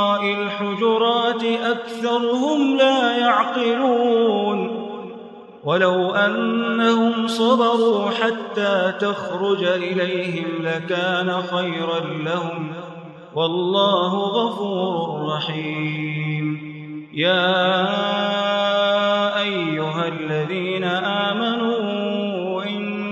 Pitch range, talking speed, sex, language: 180-230 Hz, 50 wpm, male, Arabic